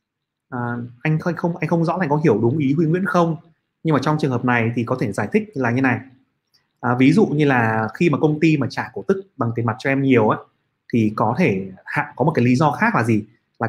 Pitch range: 120-160 Hz